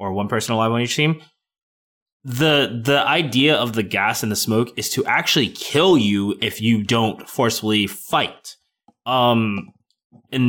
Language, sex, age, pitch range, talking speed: English, male, 20-39, 110-140 Hz, 160 wpm